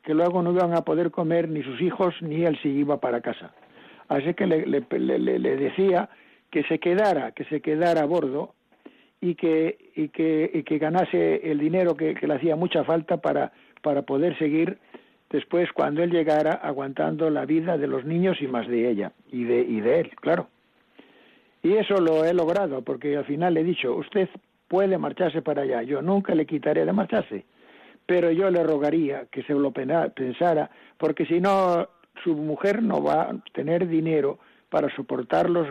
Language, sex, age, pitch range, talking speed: Spanish, male, 60-79, 150-180 Hz, 190 wpm